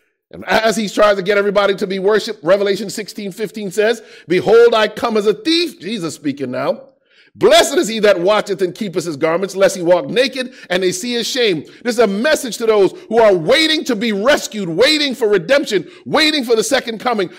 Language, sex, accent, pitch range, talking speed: English, male, American, 190-255 Hz, 210 wpm